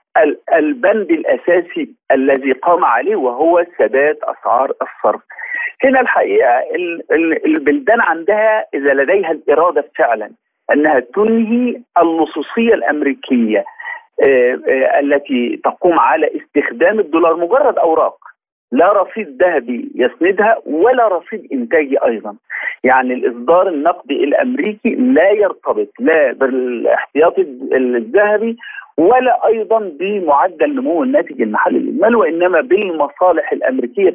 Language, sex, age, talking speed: Arabic, male, 50-69, 95 wpm